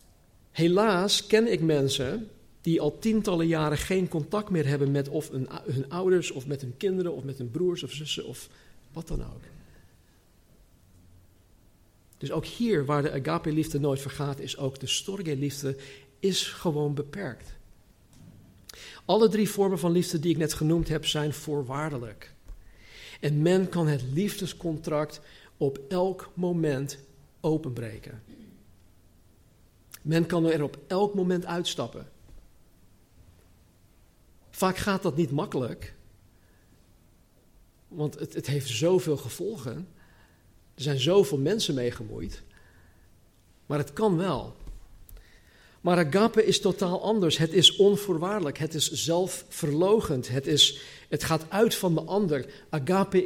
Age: 50-69